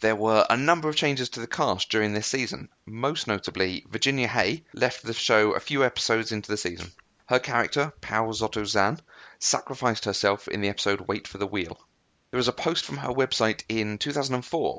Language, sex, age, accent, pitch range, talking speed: English, male, 30-49, British, 100-125 Hz, 190 wpm